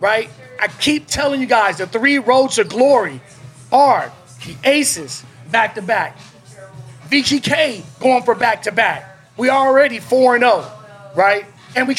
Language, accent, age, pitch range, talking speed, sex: English, American, 30-49, 195-265 Hz, 155 wpm, male